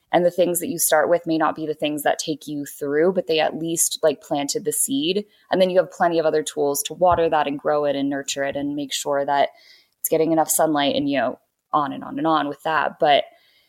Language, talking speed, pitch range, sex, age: English, 265 wpm, 150-185 Hz, female, 20-39